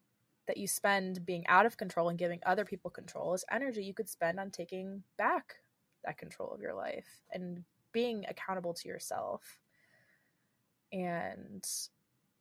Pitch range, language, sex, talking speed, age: 175-215 Hz, English, female, 150 wpm, 20-39